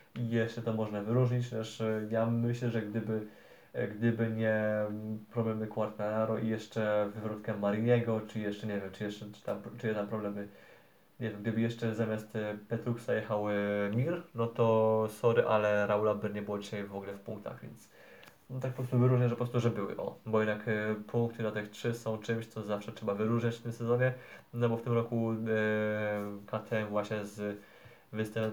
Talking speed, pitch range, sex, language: 185 wpm, 105-115 Hz, male, Polish